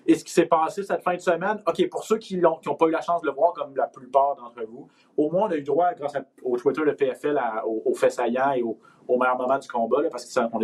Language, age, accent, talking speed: French, 30-49, Canadian, 290 wpm